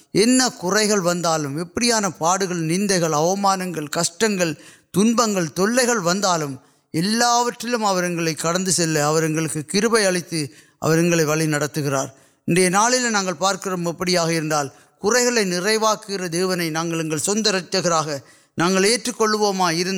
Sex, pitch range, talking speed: male, 160-195 Hz, 40 wpm